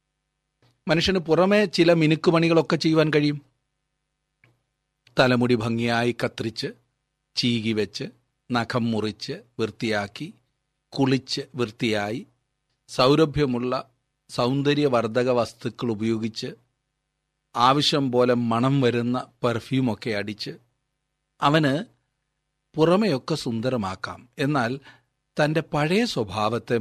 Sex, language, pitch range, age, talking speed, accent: male, Malayalam, 115-155 Hz, 40-59, 70 wpm, native